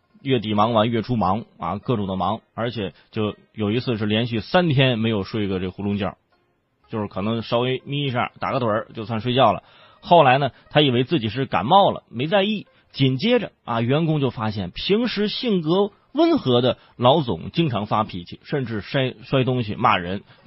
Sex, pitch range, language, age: male, 110-180 Hz, Chinese, 30-49